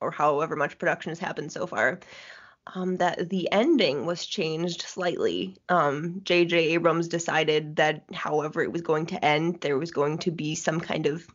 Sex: female